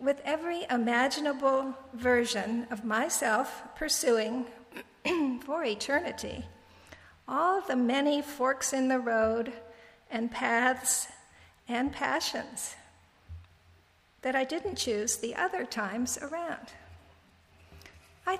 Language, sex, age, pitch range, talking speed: English, female, 50-69, 220-270 Hz, 95 wpm